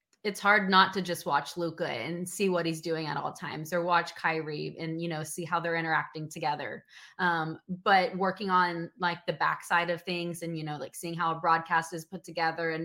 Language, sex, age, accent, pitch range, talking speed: English, female, 20-39, American, 160-180 Hz, 220 wpm